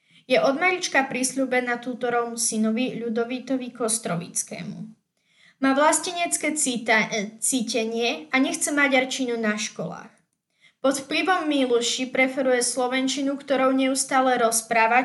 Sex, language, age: female, Slovak, 20-39